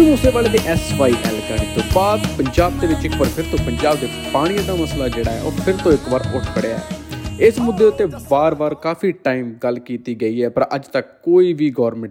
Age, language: 20-39, Punjabi